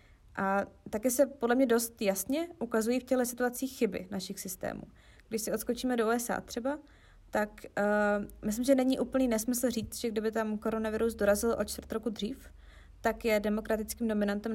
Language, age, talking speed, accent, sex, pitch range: Czech, 20-39, 170 wpm, native, female, 210-250 Hz